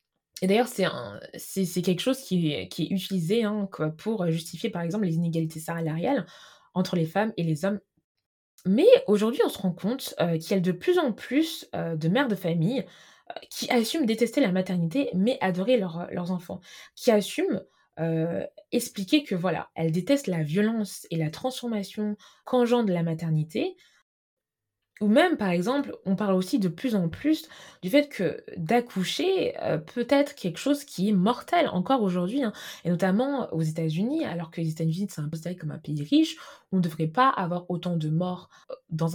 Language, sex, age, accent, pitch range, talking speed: French, female, 20-39, French, 165-235 Hz, 180 wpm